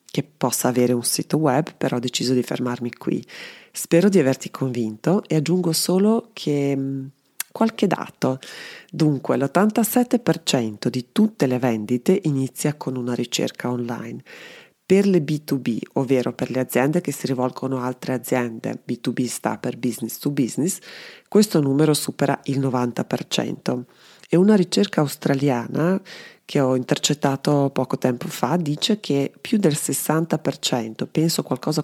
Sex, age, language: female, 30-49, Italian